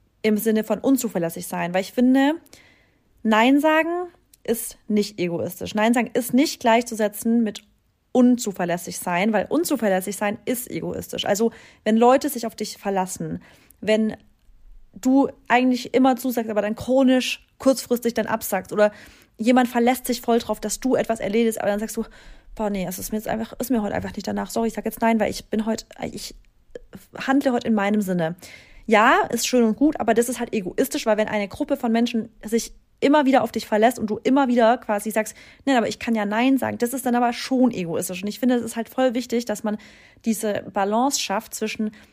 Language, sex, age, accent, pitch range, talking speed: German, female, 30-49, German, 210-245 Hz, 195 wpm